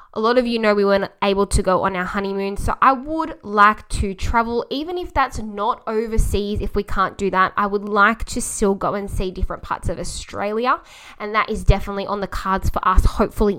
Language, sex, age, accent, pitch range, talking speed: English, female, 10-29, Australian, 185-230 Hz, 225 wpm